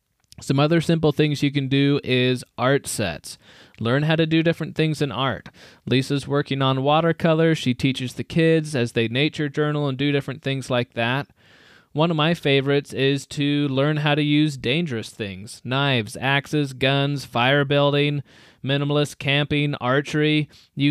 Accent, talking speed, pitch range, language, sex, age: American, 165 wpm, 125-150 Hz, English, male, 20-39